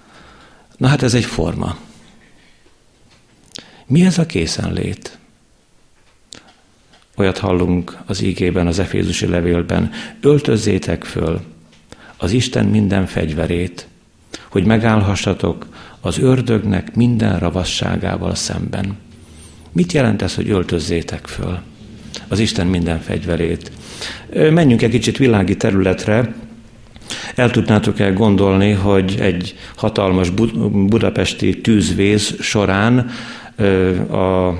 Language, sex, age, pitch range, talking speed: Hungarian, male, 60-79, 90-115 Hz, 95 wpm